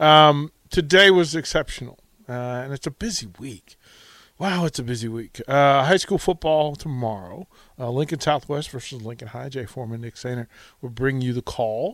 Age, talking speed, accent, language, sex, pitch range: 40-59, 175 wpm, American, English, male, 125-170 Hz